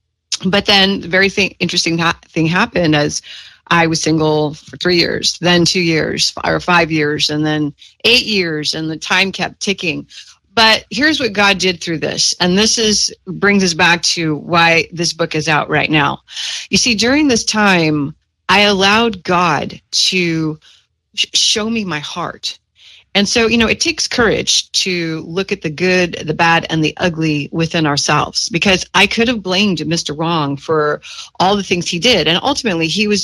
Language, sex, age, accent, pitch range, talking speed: English, female, 30-49, American, 160-205 Hz, 180 wpm